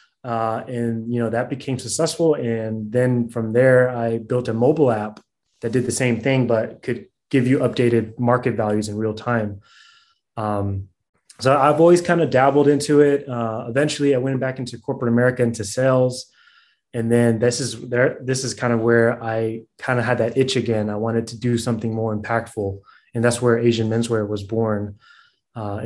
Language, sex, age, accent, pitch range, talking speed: English, male, 20-39, American, 115-130 Hz, 190 wpm